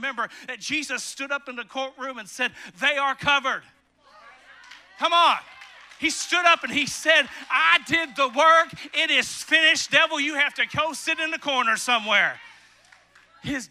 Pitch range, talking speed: 185-285 Hz, 170 wpm